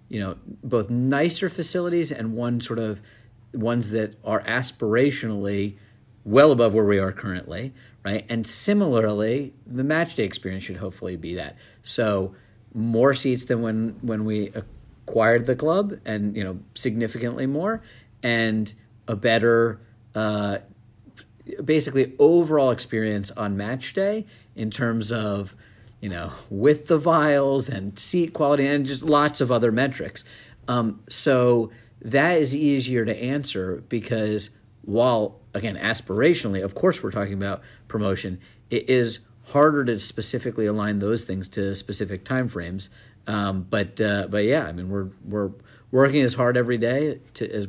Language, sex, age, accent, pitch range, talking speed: English, male, 50-69, American, 105-130 Hz, 145 wpm